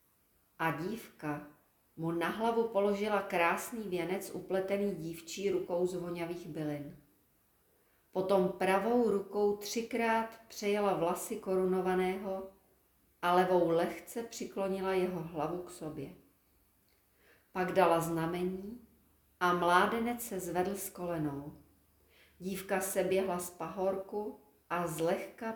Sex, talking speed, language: female, 105 wpm, Czech